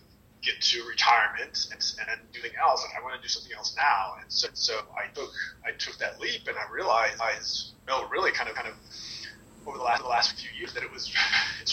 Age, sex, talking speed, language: 30-49, male, 235 wpm, English